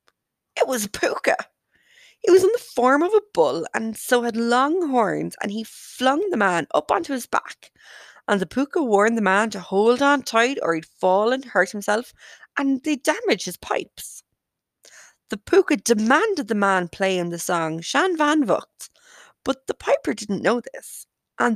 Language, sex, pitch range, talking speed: English, female, 205-295 Hz, 180 wpm